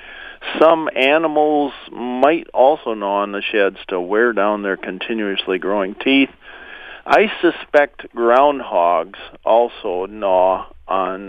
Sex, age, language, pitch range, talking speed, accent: male, 50-69, English, 105-140 Hz, 110 wpm, American